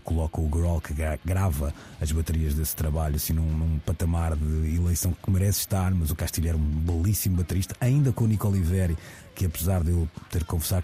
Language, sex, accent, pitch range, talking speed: Portuguese, male, Portuguese, 80-95 Hz, 200 wpm